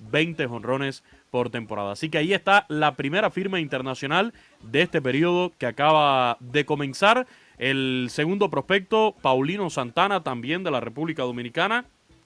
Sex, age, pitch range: male, 30-49, 130-175 Hz